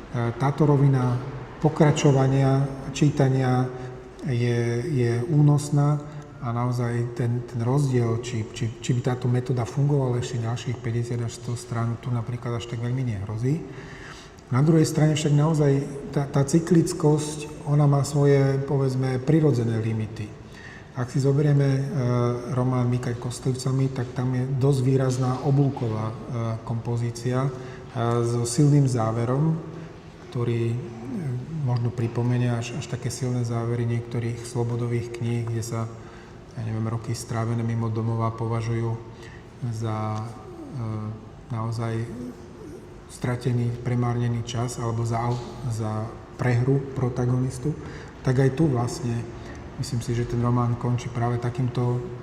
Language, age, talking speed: Slovak, 30-49, 125 wpm